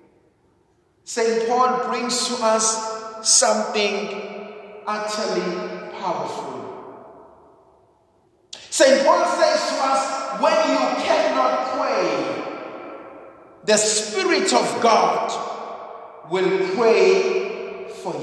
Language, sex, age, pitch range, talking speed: English, male, 50-69, 220-310 Hz, 80 wpm